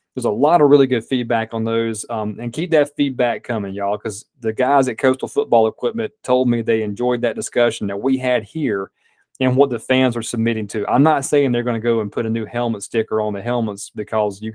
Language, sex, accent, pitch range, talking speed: English, male, American, 110-130 Hz, 240 wpm